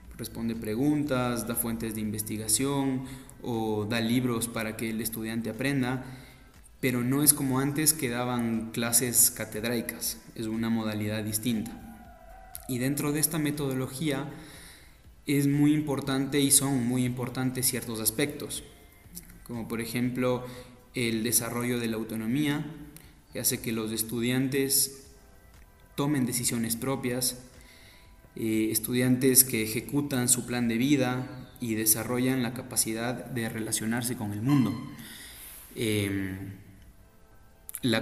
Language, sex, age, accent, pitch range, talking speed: Spanish, male, 20-39, Mexican, 110-130 Hz, 120 wpm